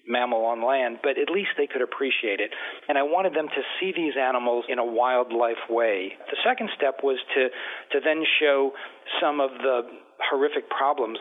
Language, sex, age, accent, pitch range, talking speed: English, male, 40-59, American, 120-140 Hz, 185 wpm